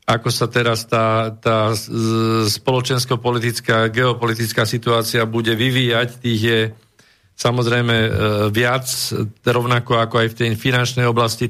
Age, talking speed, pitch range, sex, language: 40-59, 110 wpm, 115-130 Hz, male, Slovak